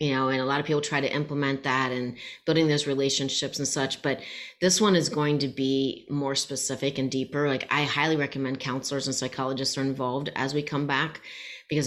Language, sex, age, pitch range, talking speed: English, female, 30-49, 140-165 Hz, 210 wpm